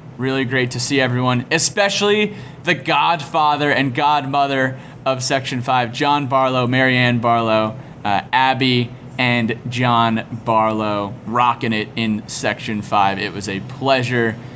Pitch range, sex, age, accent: 115-140 Hz, male, 20-39, American